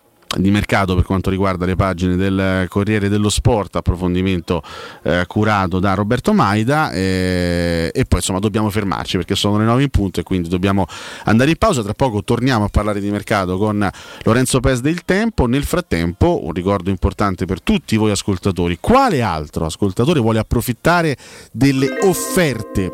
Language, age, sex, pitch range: Italian, 30-49, male, 100-130 Hz